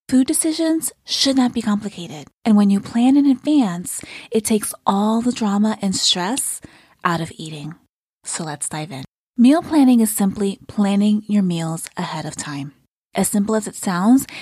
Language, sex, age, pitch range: English, female, 20-39, 170-225 Hz